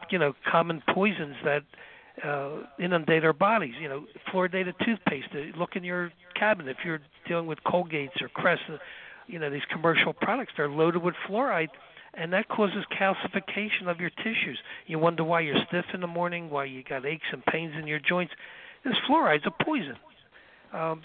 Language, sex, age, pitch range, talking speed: English, male, 60-79, 155-190 Hz, 175 wpm